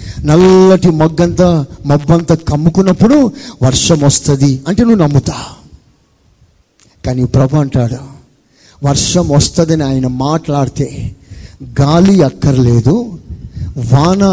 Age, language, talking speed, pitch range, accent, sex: 50-69, Telugu, 85 wpm, 120-165 Hz, native, male